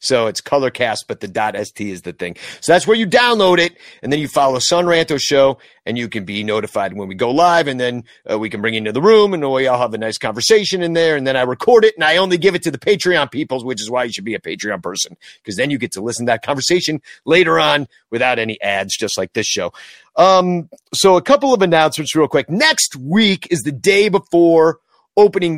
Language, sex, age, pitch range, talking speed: English, male, 40-59, 135-190 Hz, 250 wpm